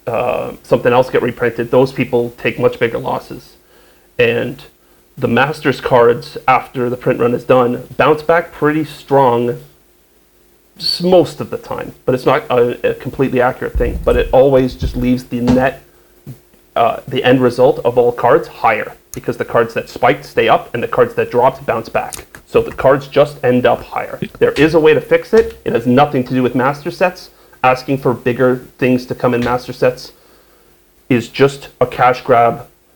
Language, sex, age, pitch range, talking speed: English, male, 30-49, 120-155 Hz, 185 wpm